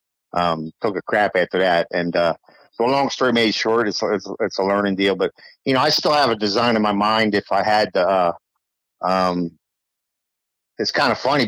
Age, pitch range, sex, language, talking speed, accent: 50-69, 90-110 Hz, male, English, 205 wpm, American